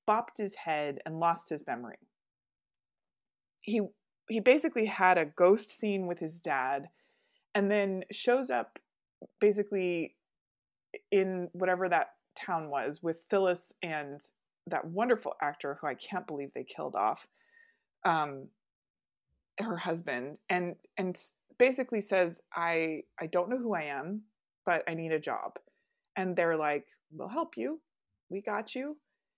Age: 30-49